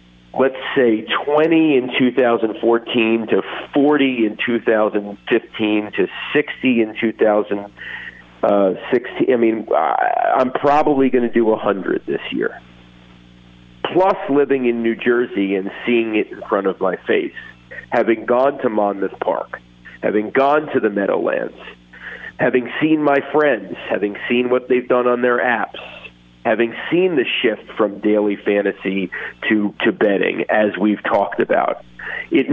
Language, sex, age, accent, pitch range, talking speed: English, male, 40-59, American, 100-130 Hz, 135 wpm